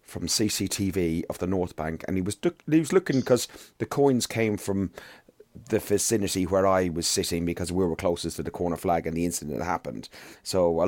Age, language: 30-49, English